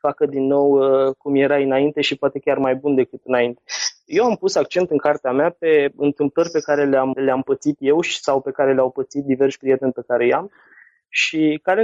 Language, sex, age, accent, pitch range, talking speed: Romanian, male, 20-39, native, 130-155 Hz, 215 wpm